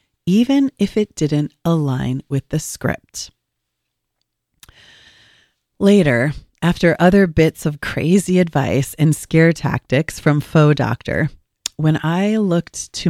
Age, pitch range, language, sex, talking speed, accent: 40-59, 135-190 Hz, English, female, 115 wpm, American